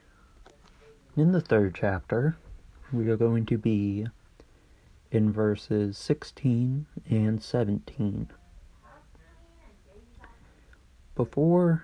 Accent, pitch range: American, 100-130 Hz